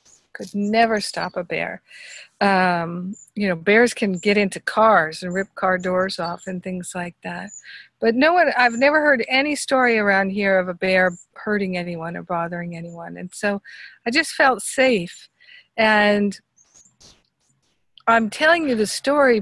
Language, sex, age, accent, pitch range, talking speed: English, female, 50-69, American, 190-235 Hz, 160 wpm